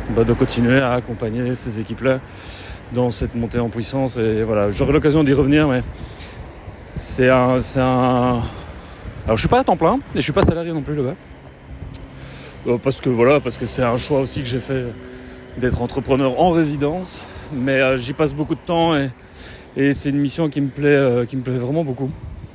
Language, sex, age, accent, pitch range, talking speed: French, male, 30-49, French, 110-140 Hz, 200 wpm